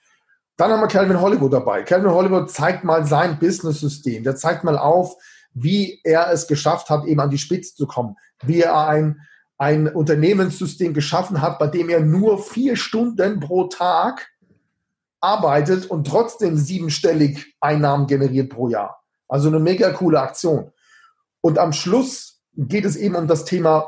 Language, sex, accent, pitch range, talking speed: German, male, German, 145-185 Hz, 160 wpm